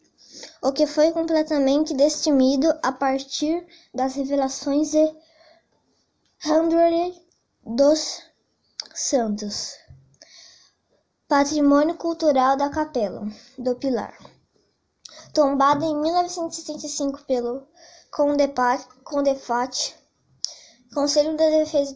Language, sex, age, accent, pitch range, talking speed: Portuguese, male, 10-29, Brazilian, 265-315 Hz, 75 wpm